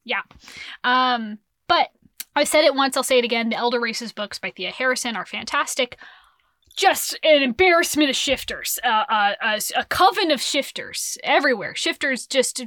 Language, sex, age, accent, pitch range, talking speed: English, female, 20-39, American, 215-305 Hz, 165 wpm